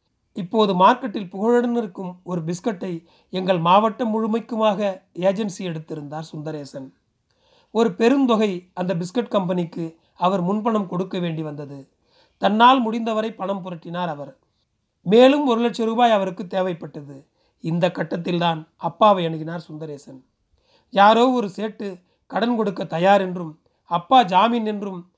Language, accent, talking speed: Tamil, native, 115 wpm